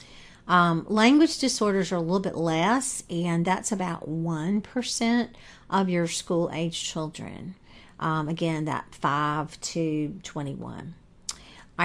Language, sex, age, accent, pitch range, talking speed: English, female, 50-69, American, 160-190 Hz, 115 wpm